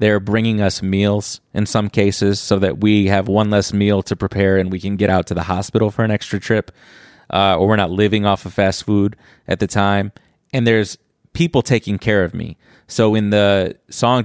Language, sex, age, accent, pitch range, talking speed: English, male, 30-49, American, 95-115 Hz, 215 wpm